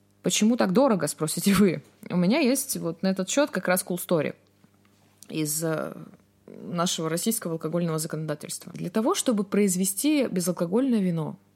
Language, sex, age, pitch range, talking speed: Russian, female, 20-39, 155-200 Hz, 140 wpm